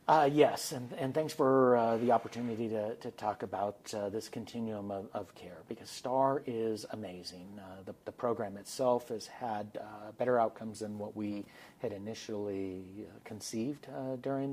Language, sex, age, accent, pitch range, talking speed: English, male, 40-59, American, 100-115 Hz, 170 wpm